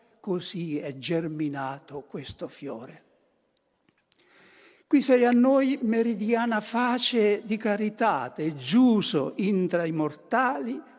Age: 60-79